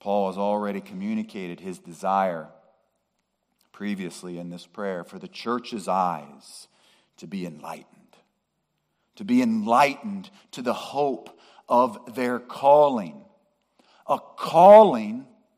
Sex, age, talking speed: male, 40-59, 110 wpm